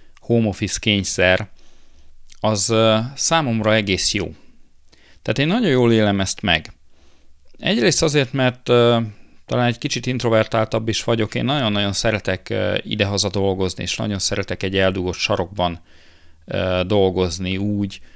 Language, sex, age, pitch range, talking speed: Hungarian, male, 40-59, 90-110 Hz, 120 wpm